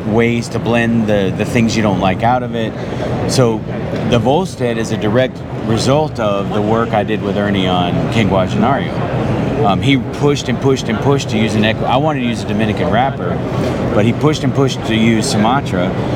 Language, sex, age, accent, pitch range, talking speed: English, male, 40-59, American, 105-125 Hz, 210 wpm